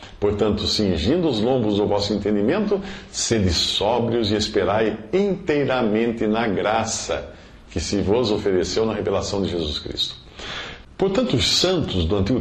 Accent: Brazilian